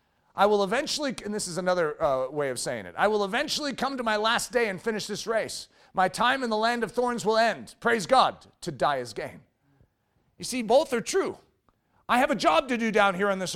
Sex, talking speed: male, 240 wpm